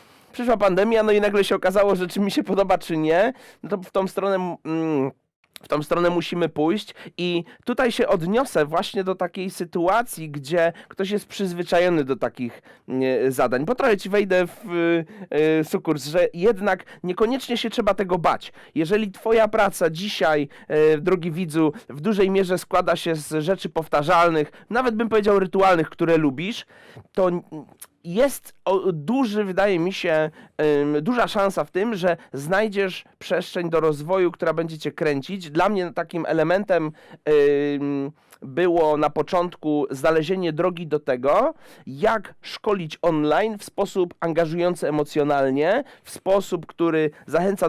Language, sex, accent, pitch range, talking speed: Polish, male, native, 155-195 Hz, 140 wpm